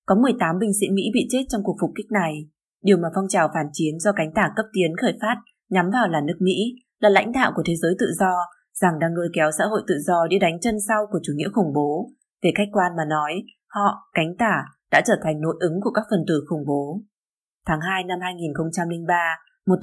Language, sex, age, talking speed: Vietnamese, female, 20-39, 240 wpm